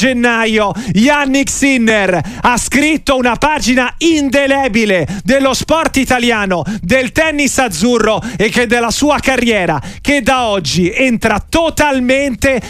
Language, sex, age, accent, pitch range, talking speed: Italian, male, 30-49, native, 220-280 Hz, 115 wpm